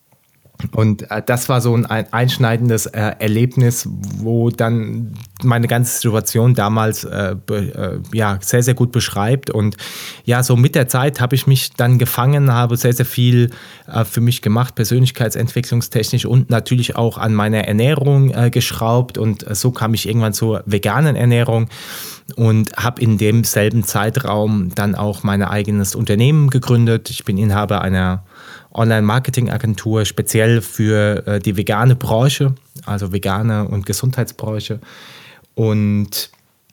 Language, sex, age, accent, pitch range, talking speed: German, male, 20-39, German, 110-130 Hz, 130 wpm